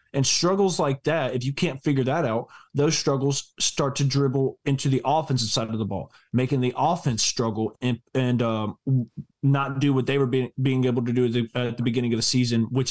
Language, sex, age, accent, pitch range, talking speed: English, male, 20-39, American, 120-145 Hz, 225 wpm